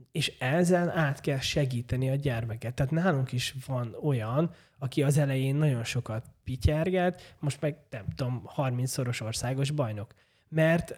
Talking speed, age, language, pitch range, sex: 140 wpm, 20-39, Hungarian, 125-155 Hz, male